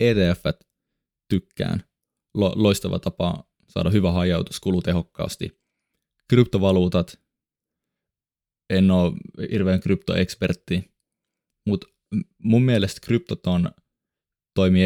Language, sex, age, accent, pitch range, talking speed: Finnish, male, 20-39, native, 85-95 Hz, 75 wpm